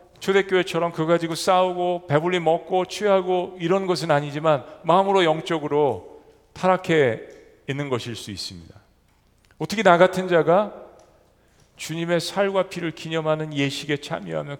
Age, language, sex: 40-59, Korean, male